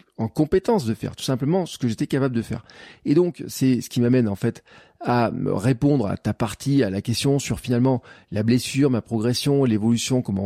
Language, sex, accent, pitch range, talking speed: French, male, French, 110-135 Hz, 210 wpm